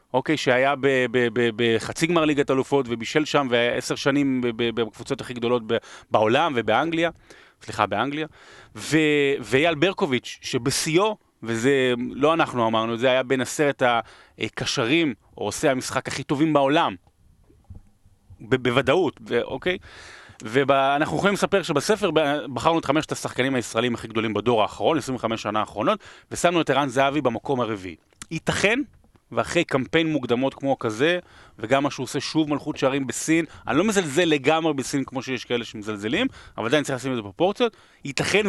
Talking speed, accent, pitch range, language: 155 wpm, native, 115-155 Hz, Hebrew